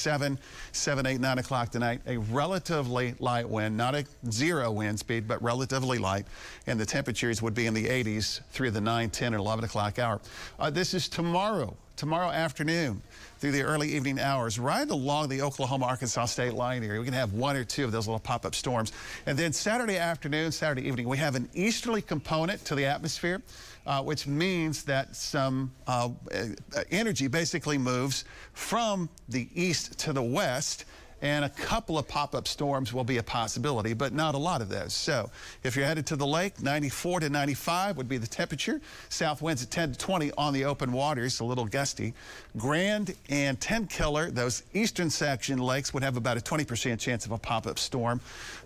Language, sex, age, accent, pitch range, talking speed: English, male, 50-69, American, 120-155 Hz, 190 wpm